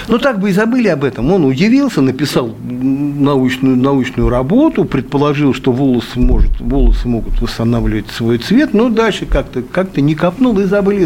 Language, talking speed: Russian, 150 wpm